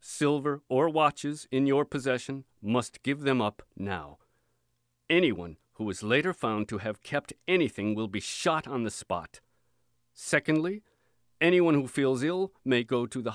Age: 50-69